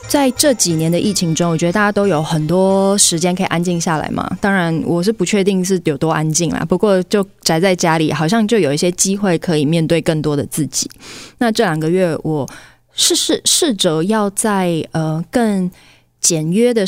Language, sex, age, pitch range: Chinese, female, 20-39, 160-210 Hz